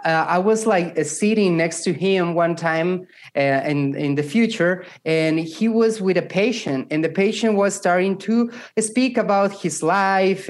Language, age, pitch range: English, 30-49, 160-200 Hz